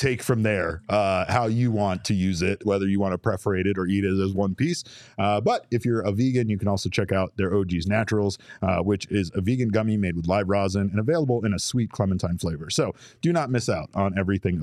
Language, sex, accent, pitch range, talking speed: English, male, American, 100-125 Hz, 245 wpm